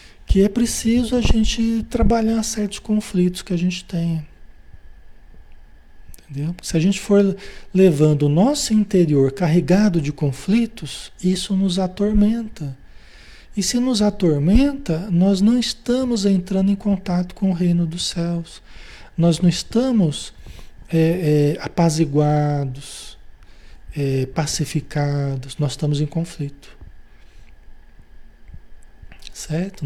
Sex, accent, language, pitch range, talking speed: male, Brazilian, Portuguese, 145-200 Hz, 105 wpm